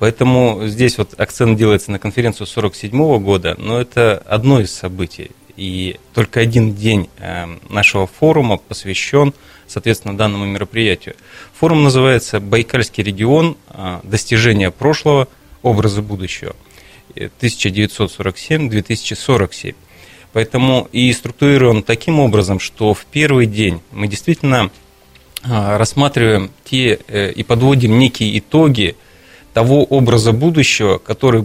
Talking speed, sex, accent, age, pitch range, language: 105 wpm, male, native, 30-49, 105-125 Hz, Russian